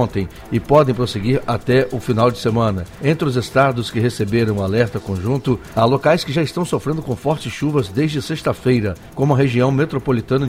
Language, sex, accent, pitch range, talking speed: Portuguese, male, Brazilian, 110-130 Hz, 170 wpm